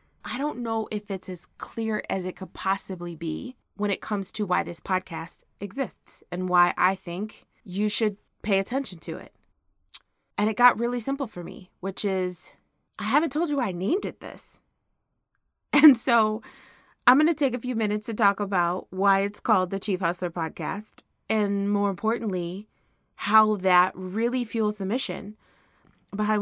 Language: English